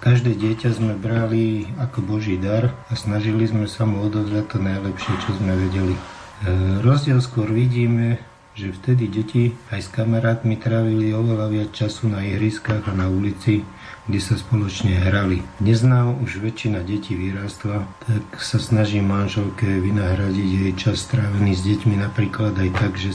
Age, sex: 50-69, male